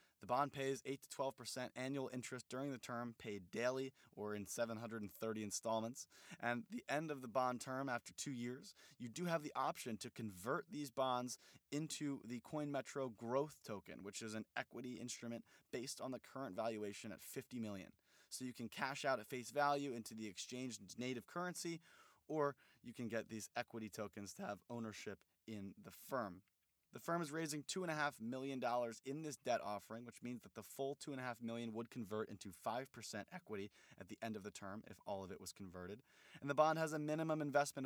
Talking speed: 190 wpm